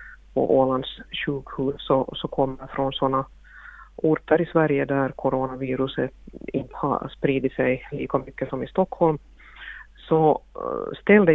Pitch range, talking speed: 135-160 Hz, 125 wpm